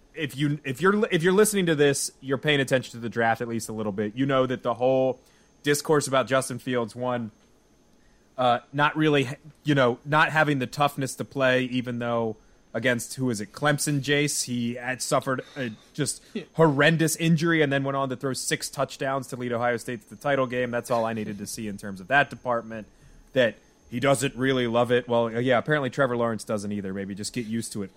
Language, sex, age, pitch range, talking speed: English, male, 20-39, 115-145 Hz, 220 wpm